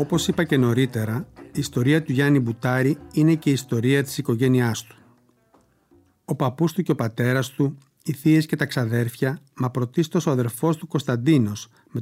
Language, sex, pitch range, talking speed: Greek, male, 120-150 Hz, 175 wpm